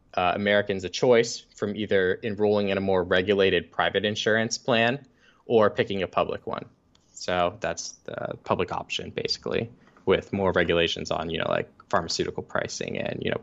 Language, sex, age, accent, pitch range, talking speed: English, male, 10-29, American, 90-120 Hz, 165 wpm